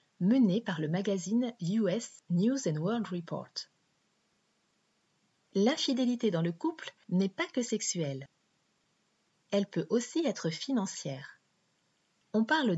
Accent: French